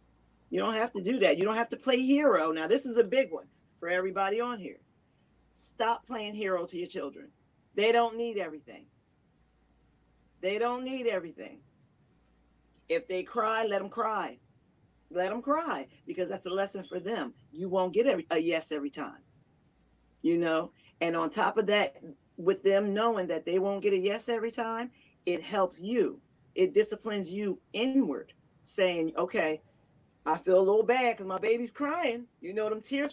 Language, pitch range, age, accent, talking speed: English, 170-230 Hz, 40-59, American, 175 wpm